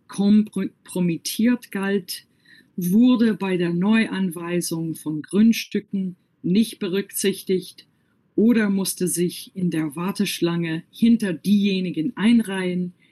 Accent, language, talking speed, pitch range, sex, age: German, German, 85 wpm, 175-220 Hz, female, 50-69